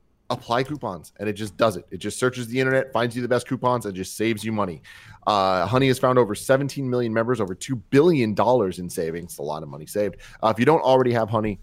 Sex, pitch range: male, 100-125 Hz